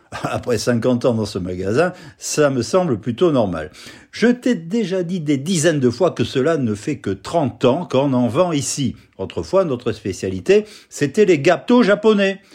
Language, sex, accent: French, male, French